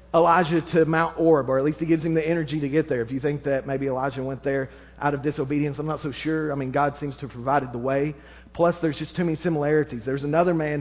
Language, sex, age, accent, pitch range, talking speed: English, male, 40-59, American, 145-175 Hz, 265 wpm